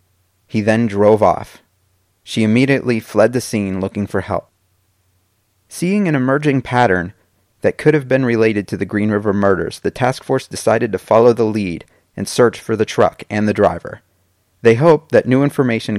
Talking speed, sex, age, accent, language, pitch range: 175 wpm, male, 30-49, American, English, 95-115 Hz